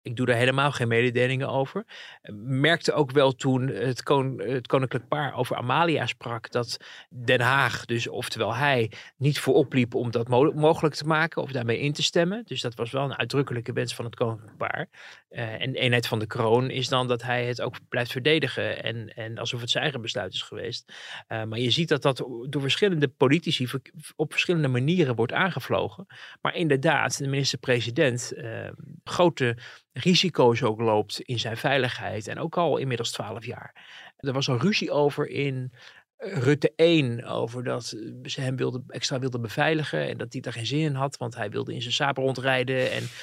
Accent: Dutch